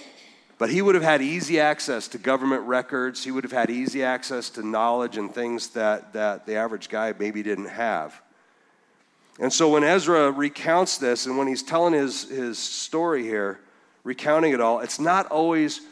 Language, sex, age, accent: English, male, 40-59, American